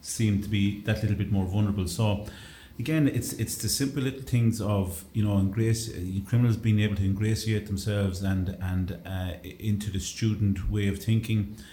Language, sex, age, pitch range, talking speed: English, male, 30-49, 95-110 Hz, 185 wpm